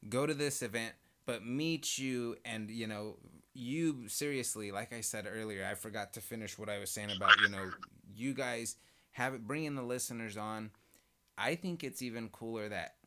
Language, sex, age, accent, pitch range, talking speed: English, male, 20-39, American, 95-110 Hz, 190 wpm